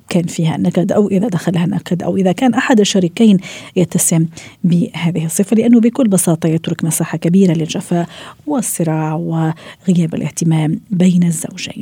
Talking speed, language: 135 wpm, Arabic